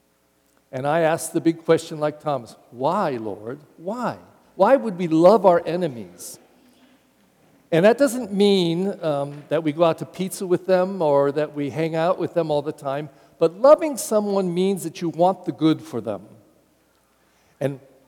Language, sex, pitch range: English, male, 145-205 Hz